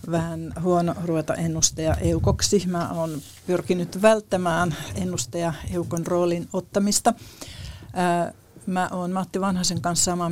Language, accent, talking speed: Finnish, native, 110 wpm